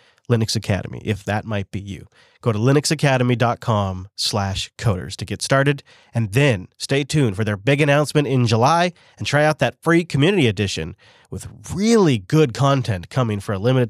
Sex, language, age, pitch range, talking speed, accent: male, English, 30-49, 110-140 Hz, 175 wpm, American